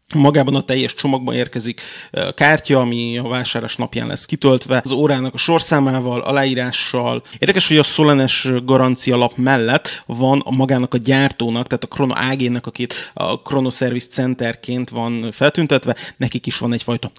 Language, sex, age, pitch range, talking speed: Hungarian, male, 30-49, 125-145 Hz, 155 wpm